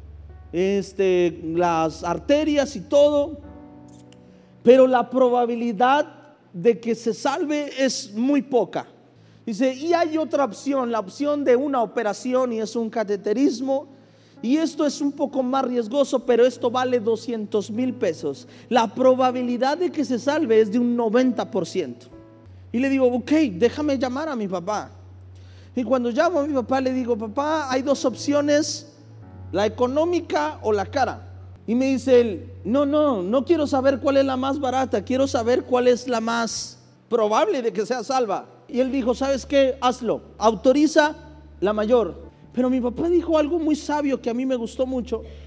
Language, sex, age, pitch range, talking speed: Spanish, male, 40-59, 205-270 Hz, 165 wpm